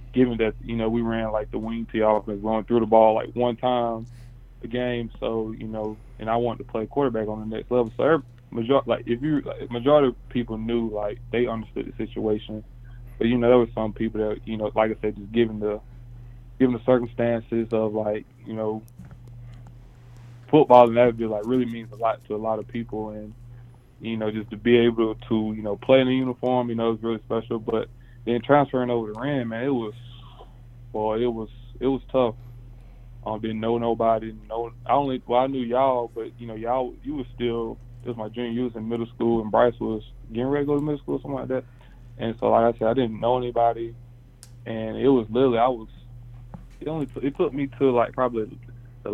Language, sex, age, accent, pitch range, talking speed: English, male, 20-39, American, 110-120 Hz, 225 wpm